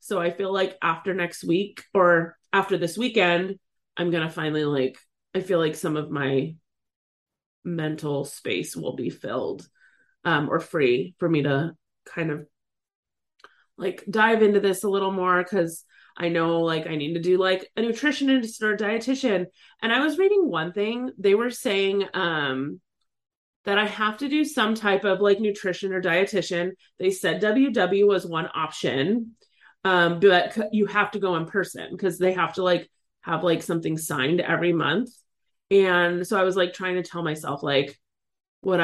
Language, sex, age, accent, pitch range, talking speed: English, female, 30-49, American, 165-210 Hz, 175 wpm